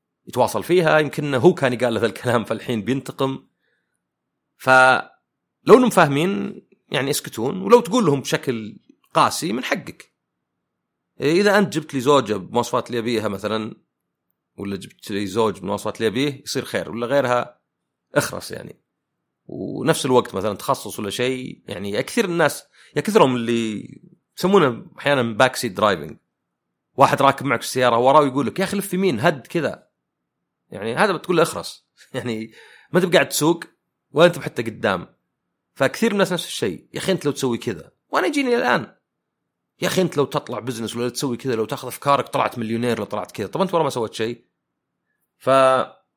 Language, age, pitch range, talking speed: Arabic, 40-59, 115-170 Hz, 160 wpm